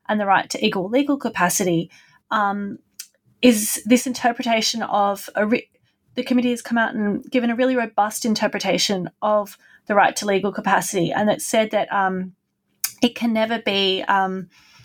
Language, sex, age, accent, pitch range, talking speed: English, female, 20-39, Australian, 195-245 Hz, 160 wpm